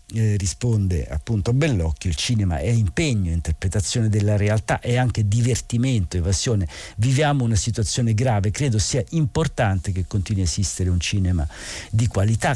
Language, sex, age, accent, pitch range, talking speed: Italian, male, 50-69, native, 85-115 Hz, 155 wpm